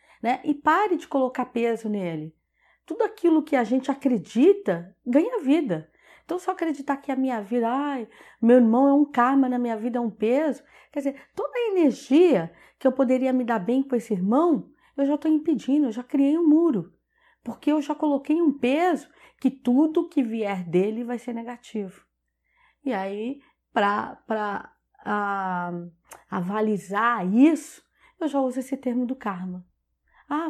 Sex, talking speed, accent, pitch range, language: female, 165 wpm, Brazilian, 210-295 Hz, Portuguese